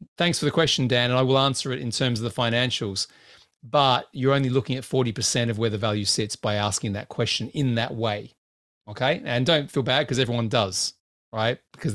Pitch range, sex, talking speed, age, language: 120-150 Hz, male, 220 wpm, 30-49, English